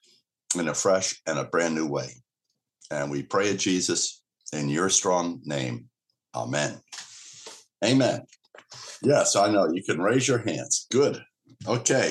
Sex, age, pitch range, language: male, 60-79, 90-130 Hz, English